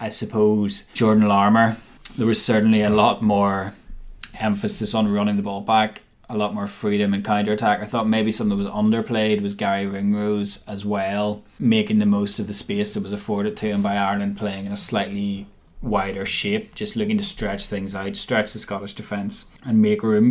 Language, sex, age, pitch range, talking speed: English, male, 20-39, 100-115 Hz, 195 wpm